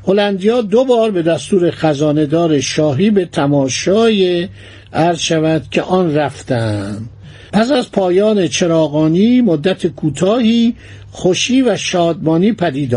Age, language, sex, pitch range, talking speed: 60-79, Persian, male, 155-215 Hz, 110 wpm